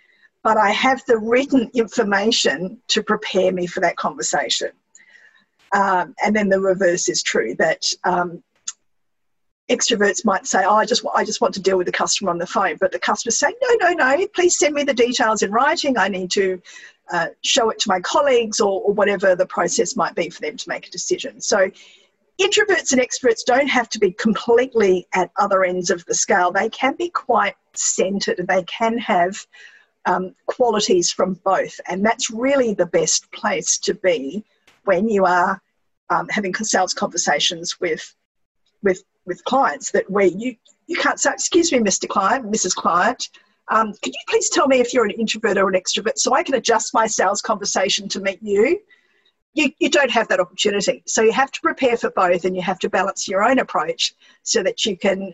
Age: 50-69